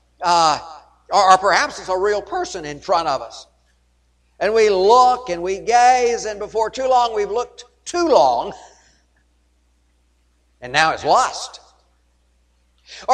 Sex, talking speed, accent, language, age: male, 140 wpm, American, English, 50-69